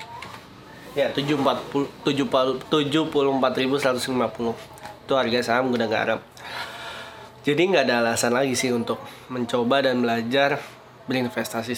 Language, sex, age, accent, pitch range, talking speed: Indonesian, male, 20-39, native, 125-160 Hz, 105 wpm